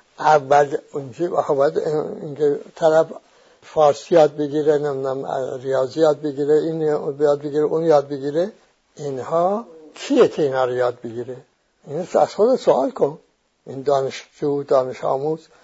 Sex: male